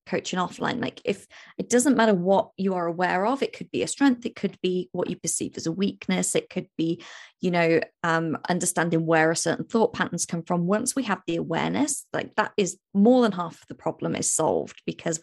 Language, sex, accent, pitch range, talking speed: English, female, British, 165-215 Hz, 225 wpm